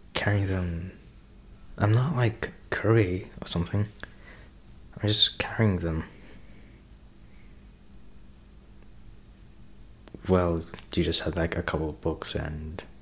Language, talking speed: English, 100 wpm